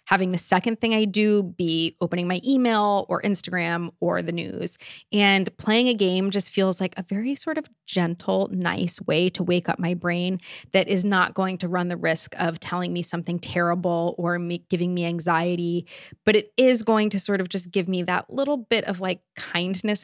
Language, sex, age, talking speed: English, female, 20-39, 200 wpm